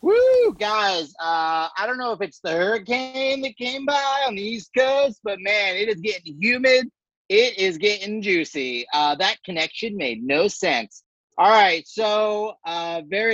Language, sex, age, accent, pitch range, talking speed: English, male, 30-49, American, 150-225 Hz, 170 wpm